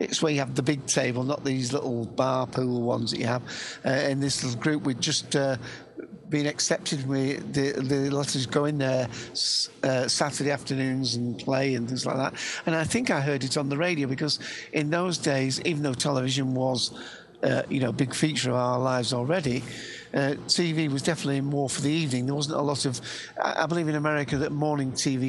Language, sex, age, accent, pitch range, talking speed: English, male, 50-69, British, 130-150 Hz, 210 wpm